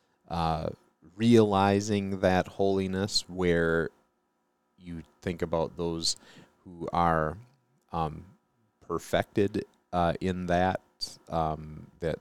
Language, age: English, 30-49